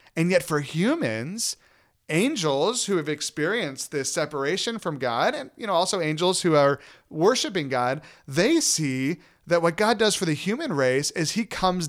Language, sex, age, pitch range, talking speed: English, male, 30-49, 145-185 Hz, 170 wpm